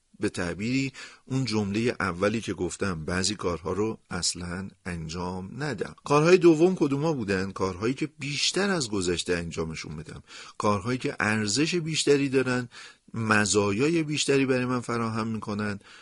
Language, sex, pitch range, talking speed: Persian, male, 95-130 Hz, 135 wpm